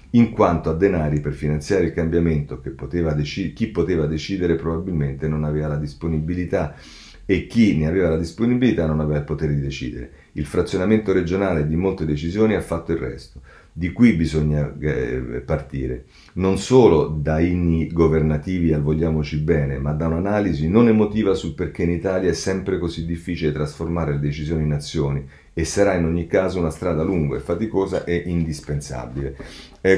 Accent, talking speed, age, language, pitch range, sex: native, 170 wpm, 40-59, Italian, 75-100 Hz, male